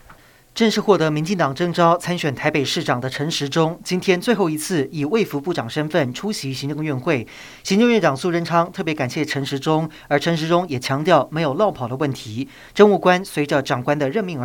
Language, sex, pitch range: Chinese, male, 135-175 Hz